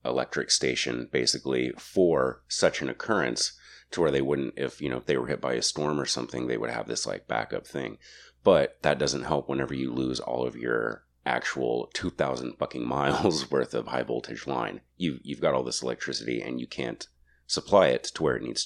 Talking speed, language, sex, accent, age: 210 wpm, English, male, American, 30-49